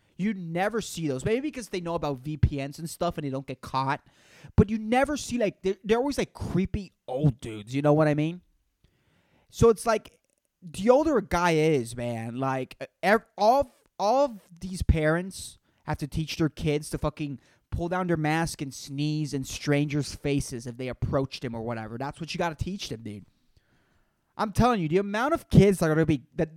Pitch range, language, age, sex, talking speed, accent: 135-175 Hz, English, 20-39, male, 210 wpm, American